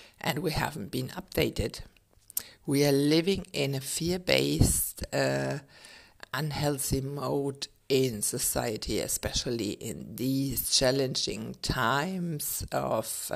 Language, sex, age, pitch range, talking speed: English, female, 60-79, 105-140 Hz, 100 wpm